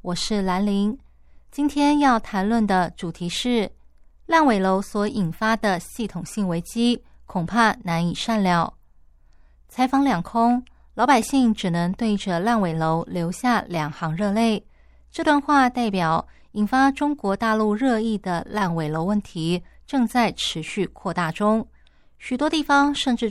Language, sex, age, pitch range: Chinese, female, 20-39, 180-240 Hz